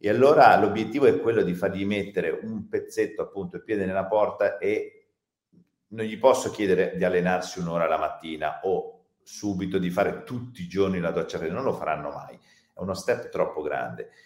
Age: 40-59